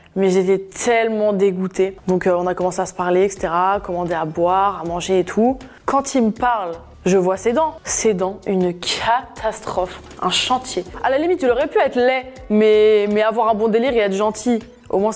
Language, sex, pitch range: French, female, 185-225 Hz